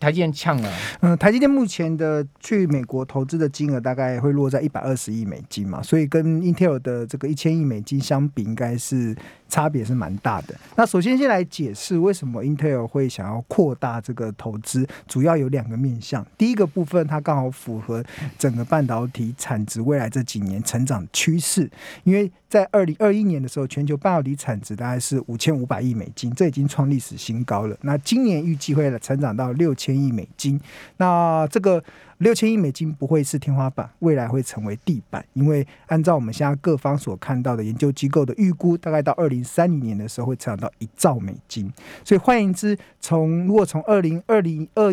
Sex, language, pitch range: male, Chinese, 125-165 Hz